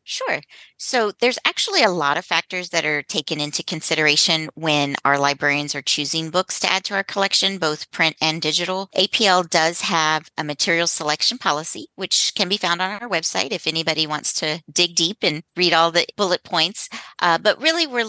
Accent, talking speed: American, 190 wpm